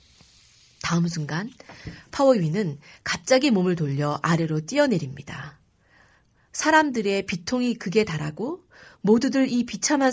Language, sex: Korean, female